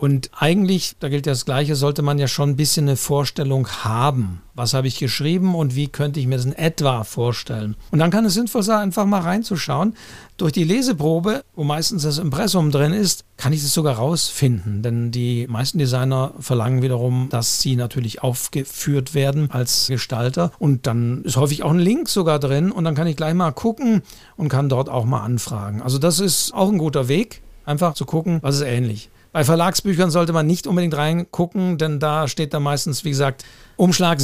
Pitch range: 125-165 Hz